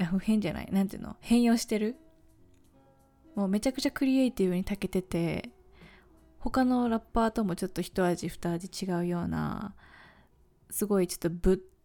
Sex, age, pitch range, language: female, 20-39, 180-230 Hz, Japanese